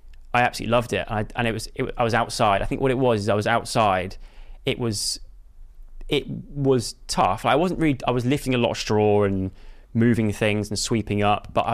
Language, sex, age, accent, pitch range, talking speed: English, male, 20-39, British, 100-115 Hz, 215 wpm